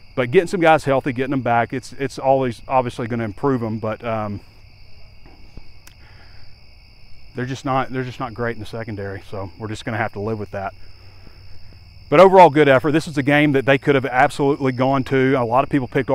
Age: 30-49